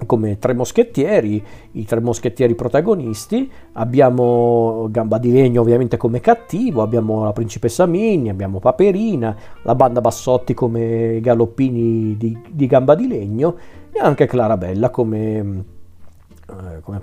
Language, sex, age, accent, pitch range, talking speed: Italian, male, 40-59, native, 115-130 Hz, 125 wpm